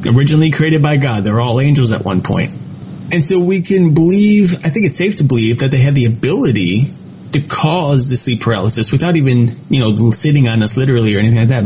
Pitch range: 120-155 Hz